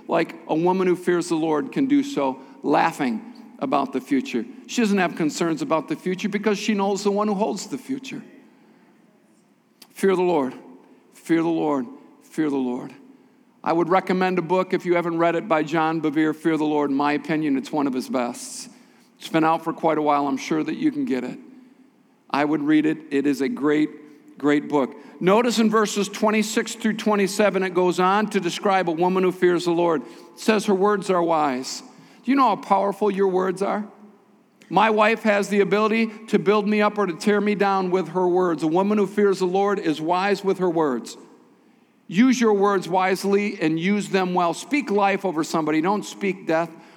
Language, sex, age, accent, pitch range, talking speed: English, male, 50-69, American, 165-210 Hz, 205 wpm